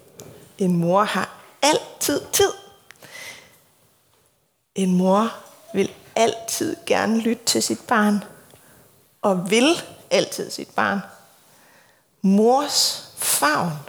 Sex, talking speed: female, 90 wpm